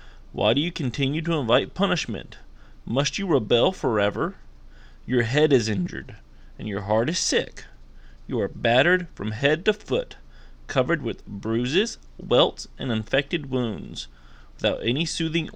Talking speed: 145 wpm